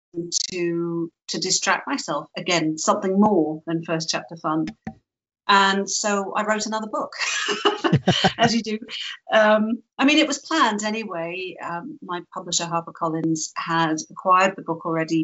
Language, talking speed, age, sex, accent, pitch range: English, 145 wpm, 40-59, female, British, 175-210 Hz